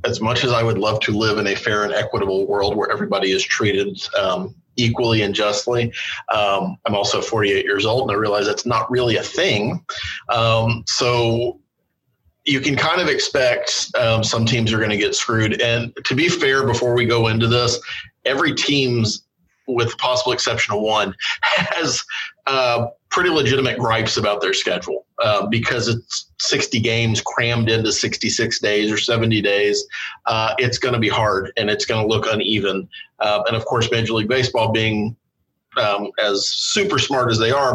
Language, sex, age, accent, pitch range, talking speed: English, male, 30-49, American, 105-120 Hz, 185 wpm